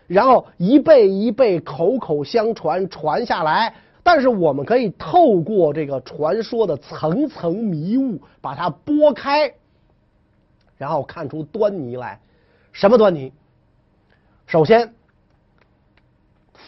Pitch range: 135-225 Hz